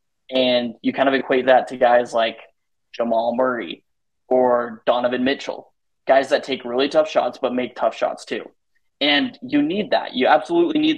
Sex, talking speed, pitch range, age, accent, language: male, 175 wpm, 125-140 Hz, 20-39, American, English